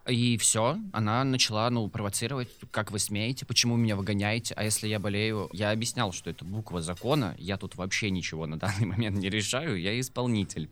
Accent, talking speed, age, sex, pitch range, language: native, 185 wpm, 20-39, male, 95-125 Hz, Russian